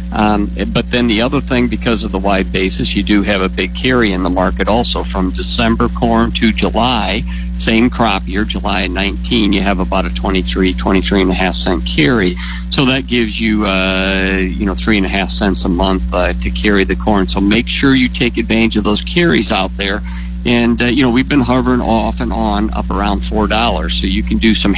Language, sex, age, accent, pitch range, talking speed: English, male, 50-69, American, 95-120 Hz, 210 wpm